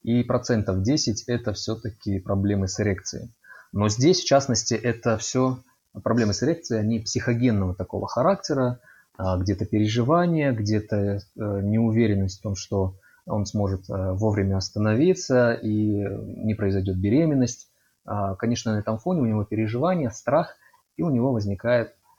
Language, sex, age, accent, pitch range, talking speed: Russian, male, 20-39, native, 105-125 Hz, 130 wpm